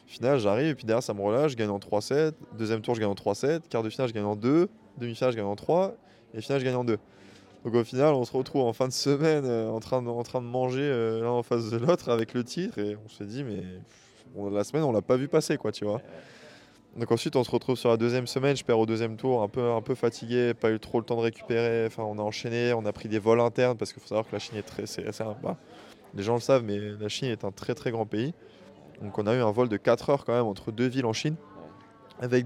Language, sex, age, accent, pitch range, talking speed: French, male, 20-39, French, 105-125 Hz, 290 wpm